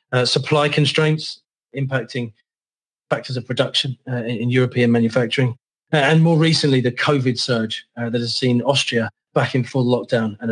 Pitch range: 120-145 Hz